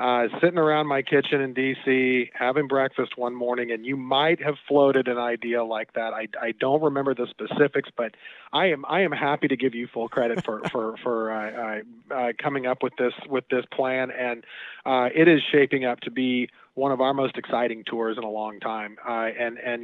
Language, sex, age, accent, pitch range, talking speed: English, male, 40-59, American, 120-135 Hz, 205 wpm